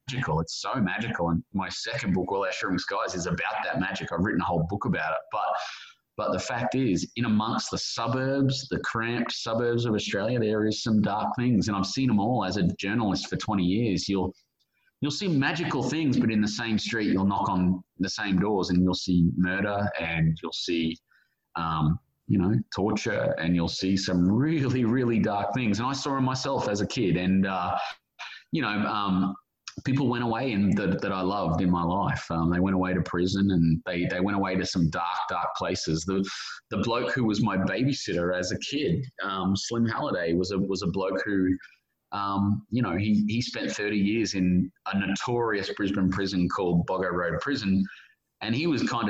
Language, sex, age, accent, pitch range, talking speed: Dutch, male, 30-49, Australian, 90-115 Hz, 205 wpm